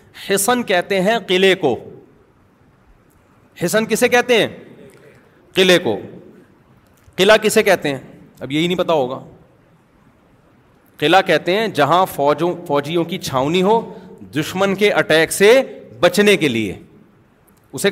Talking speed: 125 wpm